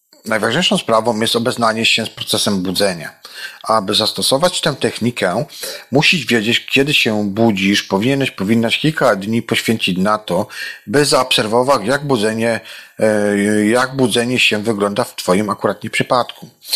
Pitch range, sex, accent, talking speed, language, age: 105-130 Hz, male, native, 130 wpm, Polish, 40-59